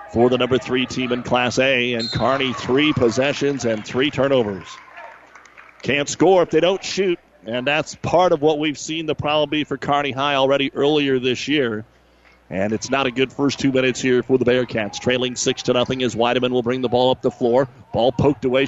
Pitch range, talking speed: 115-135 Hz, 210 wpm